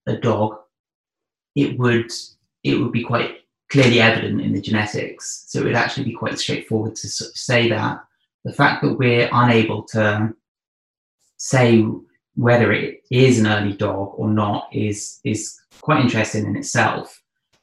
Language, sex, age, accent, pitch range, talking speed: English, male, 20-39, British, 105-125 Hz, 155 wpm